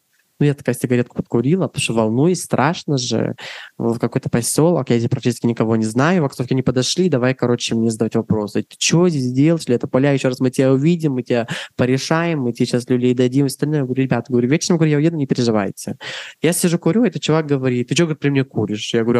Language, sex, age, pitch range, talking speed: Russian, male, 20-39, 120-155 Hz, 235 wpm